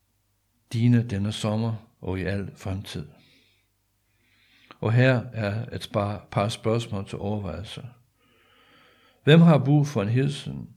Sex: male